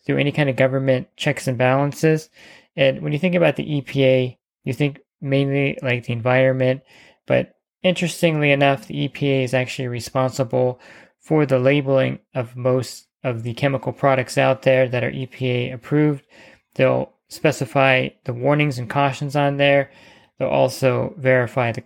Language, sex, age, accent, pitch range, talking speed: English, male, 20-39, American, 130-145 Hz, 155 wpm